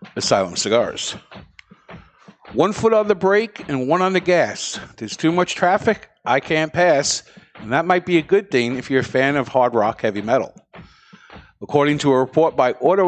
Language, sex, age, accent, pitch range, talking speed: English, male, 50-69, American, 135-180 Hz, 190 wpm